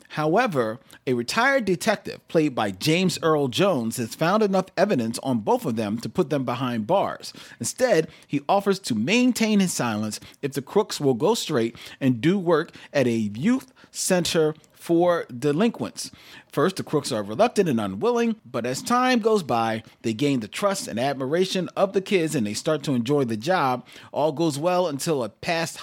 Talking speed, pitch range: 180 wpm, 125-185 Hz